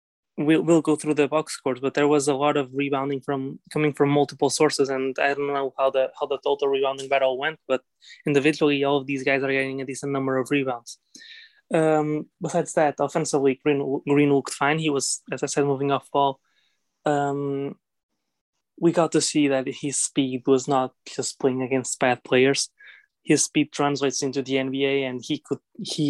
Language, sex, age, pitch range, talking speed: English, male, 20-39, 135-150 Hz, 195 wpm